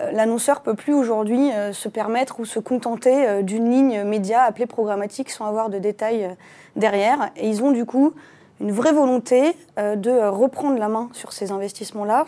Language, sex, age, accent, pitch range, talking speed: French, female, 20-39, French, 215-265 Hz, 170 wpm